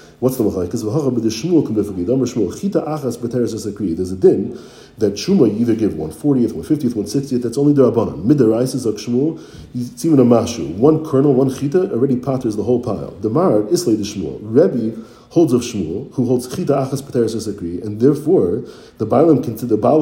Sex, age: male, 40-59